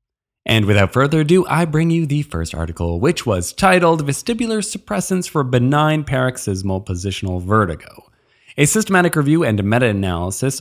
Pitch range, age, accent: 110-165 Hz, 20-39, American